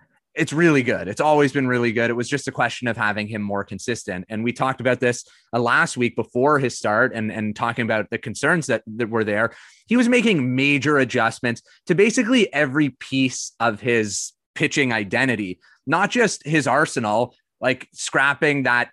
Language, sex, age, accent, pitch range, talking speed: English, male, 30-49, American, 115-135 Hz, 185 wpm